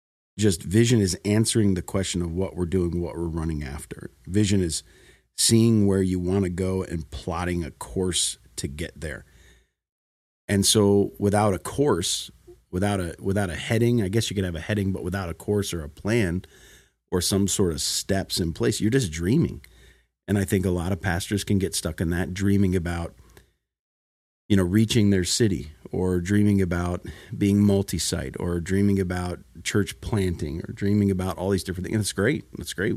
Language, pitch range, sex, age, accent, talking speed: English, 85-105 Hz, male, 40-59, American, 190 wpm